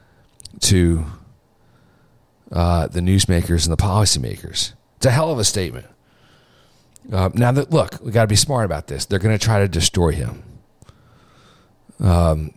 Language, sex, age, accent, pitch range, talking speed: English, male, 40-59, American, 75-100 Hz, 150 wpm